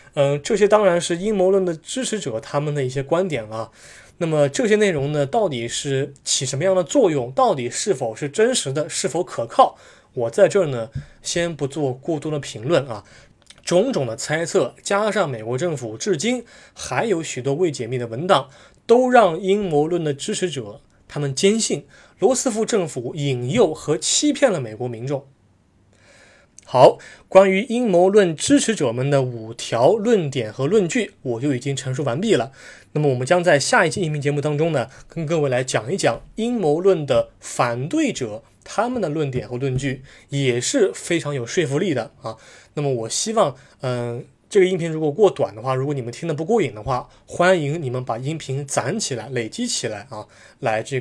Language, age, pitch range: Chinese, 20-39, 125-185 Hz